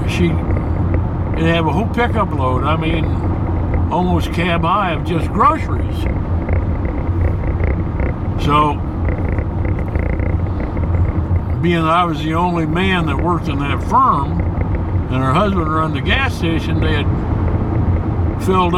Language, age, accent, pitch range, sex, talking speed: English, 60-79, American, 85-100 Hz, male, 120 wpm